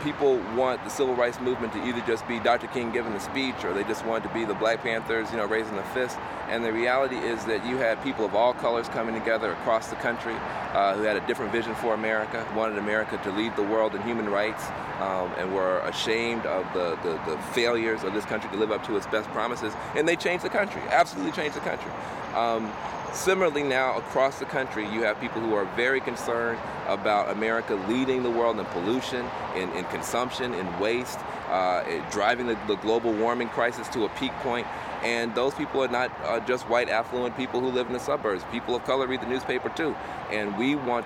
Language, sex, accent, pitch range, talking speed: English, male, American, 110-125 Hz, 220 wpm